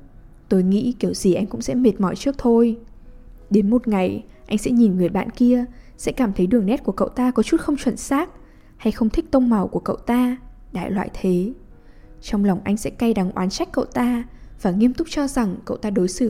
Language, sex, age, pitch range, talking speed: English, female, 10-29, 195-245 Hz, 230 wpm